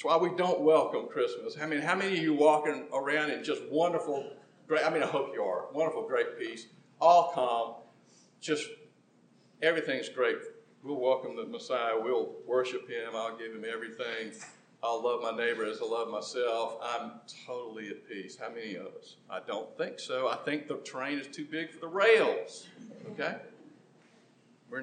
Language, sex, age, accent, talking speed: English, male, 50-69, American, 180 wpm